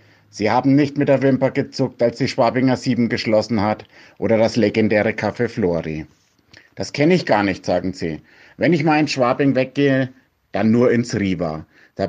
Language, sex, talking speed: German, male, 180 wpm